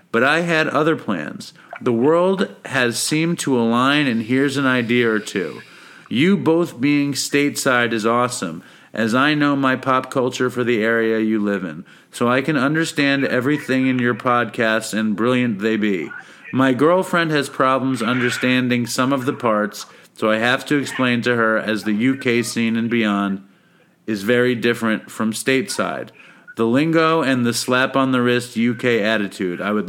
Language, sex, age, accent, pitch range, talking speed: English, male, 40-59, American, 115-140 Hz, 175 wpm